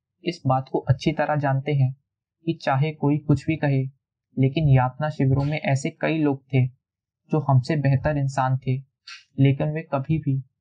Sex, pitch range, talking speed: male, 130-150 Hz, 170 wpm